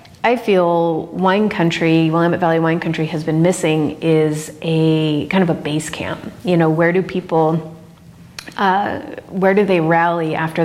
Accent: American